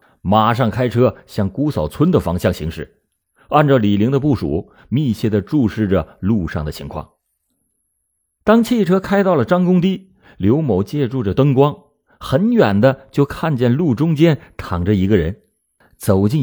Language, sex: Chinese, male